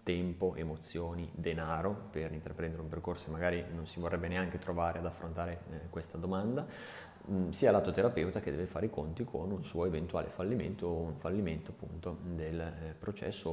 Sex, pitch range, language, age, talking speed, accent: male, 85-95 Hz, Italian, 20-39, 165 wpm, native